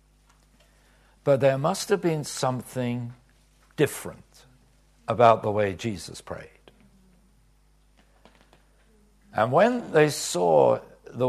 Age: 60-79